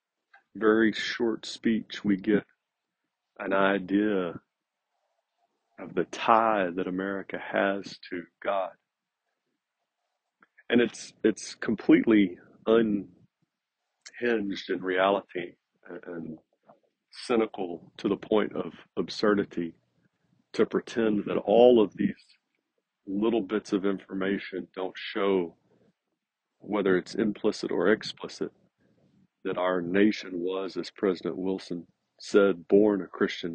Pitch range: 90-105 Hz